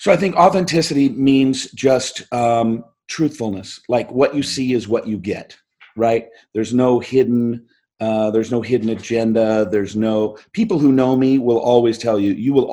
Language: English